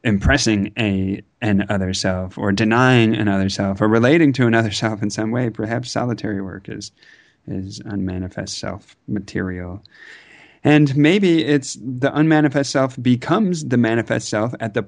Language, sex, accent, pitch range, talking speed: English, male, American, 105-125 Hz, 155 wpm